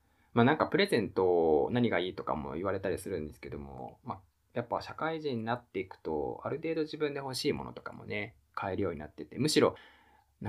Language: Japanese